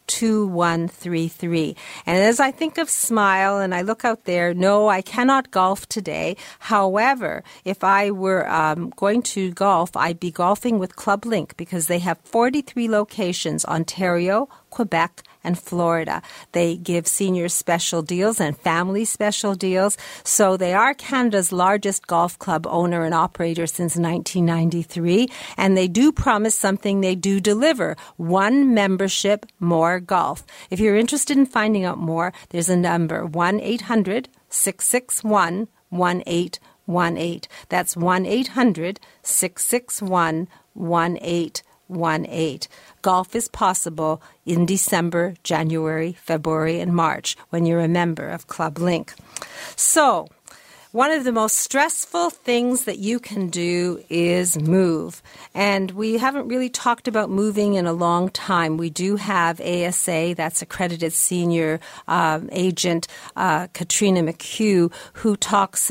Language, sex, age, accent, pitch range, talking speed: English, female, 50-69, American, 170-210 Hz, 130 wpm